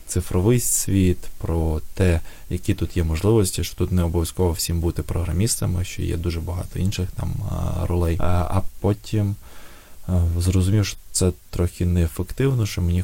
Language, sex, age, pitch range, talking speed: Ukrainian, male, 20-39, 85-95 Hz, 145 wpm